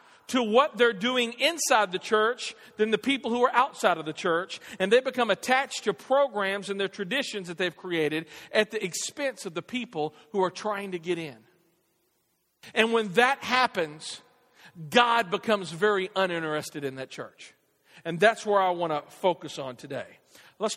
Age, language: 50-69, English